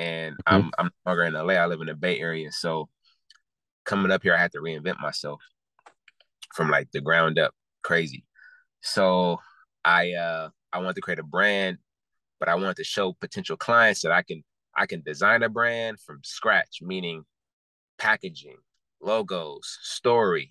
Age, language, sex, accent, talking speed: 20-39, English, male, American, 165 wpm